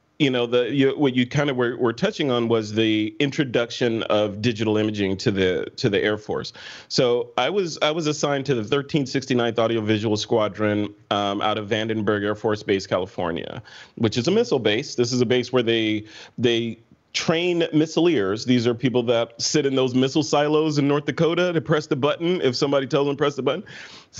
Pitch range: 115-150 Hz